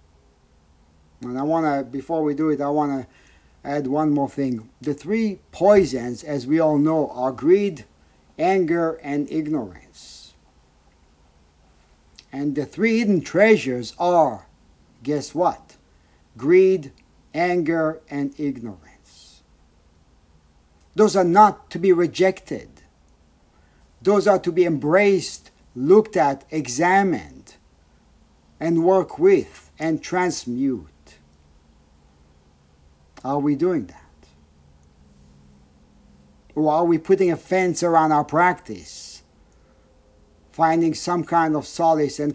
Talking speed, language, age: 110 wpm, English, 50-69